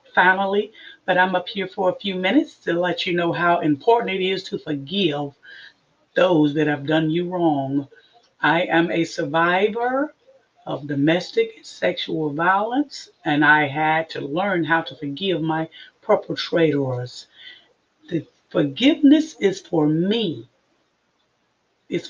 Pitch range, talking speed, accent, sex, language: 150-205 Hz, 135 wpm, American, female, English